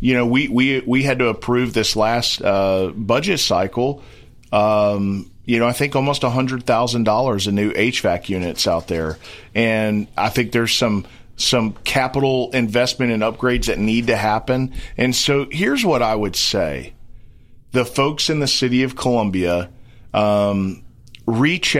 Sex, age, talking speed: male, 40-59, 155 wpm